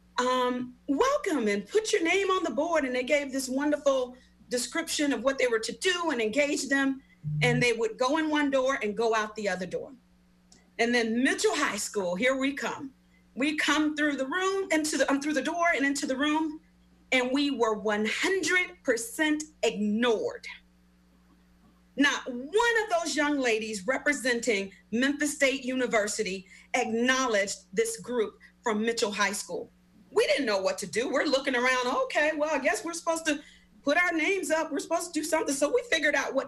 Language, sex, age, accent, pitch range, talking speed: English, female, 40-59, American, 220-300 Hz, 185 wpm